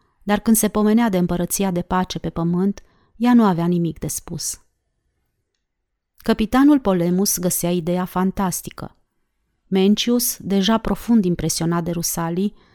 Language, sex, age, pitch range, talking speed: Romanian, female, 30-49, 170-225 Hz, 125 wpm